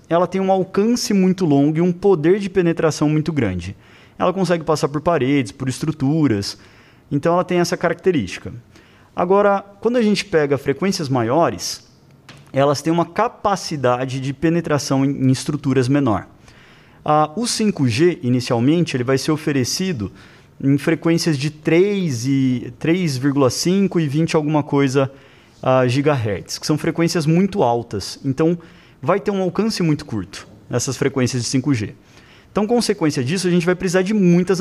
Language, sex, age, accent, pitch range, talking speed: Portuguese, male, 20-39, Brazilian, 130-175 Hz, 150 wpm